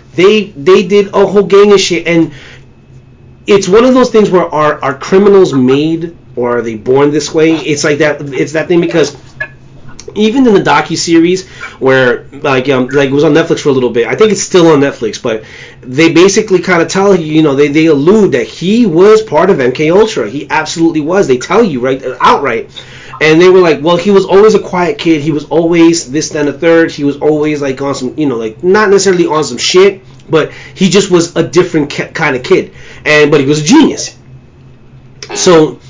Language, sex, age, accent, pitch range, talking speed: English, male, 30-49, American, 140-185 Hz, 220 wpm